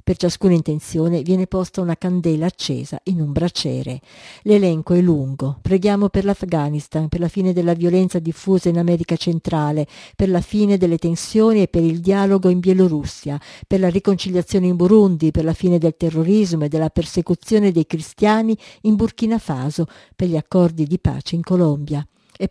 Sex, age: female, 50-69